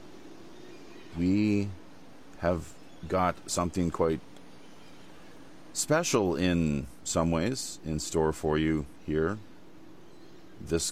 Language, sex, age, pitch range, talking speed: English, male, 40-59, 75-95 Hz, 80 wpm